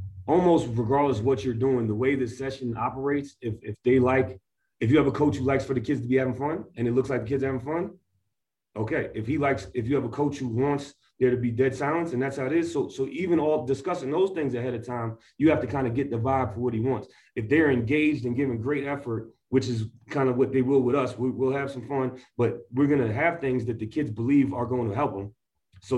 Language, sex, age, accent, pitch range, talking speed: English, male, 30-49, American, 120-140 Hz, 270 wpm